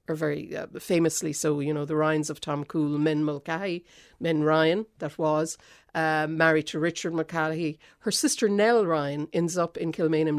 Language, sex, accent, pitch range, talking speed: English, female, Irish, 150-170 Hz, 175 wpm